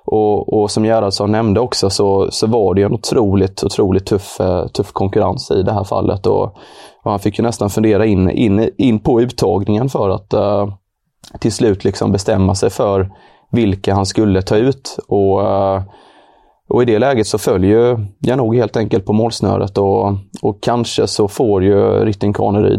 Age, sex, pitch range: 20-39, male, 100-115 Hz